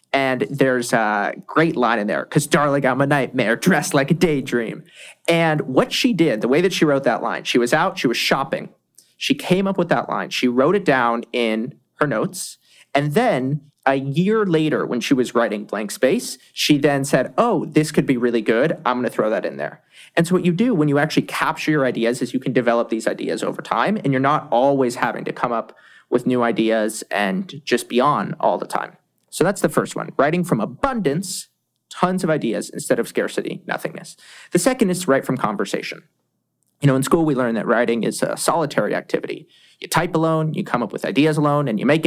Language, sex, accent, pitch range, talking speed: English, male, American, 130-180 Hz, 220 wpm